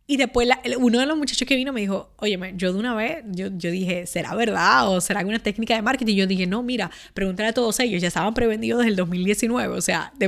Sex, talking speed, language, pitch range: female, 255 wpm, Spanish, 200-245 Hz